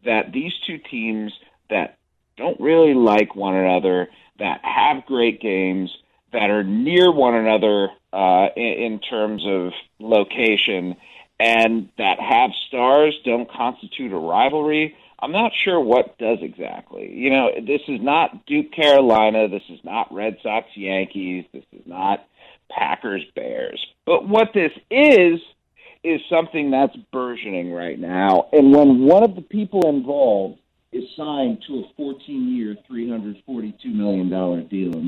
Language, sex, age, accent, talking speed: English, male, 40-59, American, 140 wpm